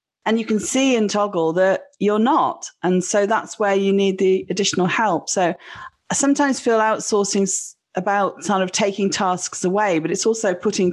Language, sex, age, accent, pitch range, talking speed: English, female, 40-59, British, 160-205 Hz, 180 wpm